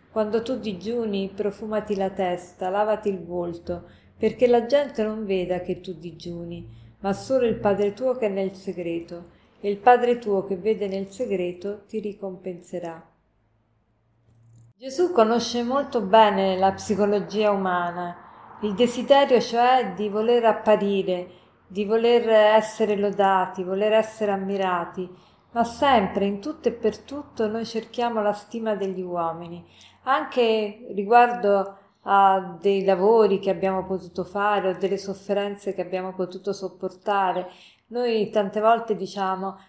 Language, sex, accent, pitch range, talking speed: Italian, female, native, 190-225 Hz, 135 wpm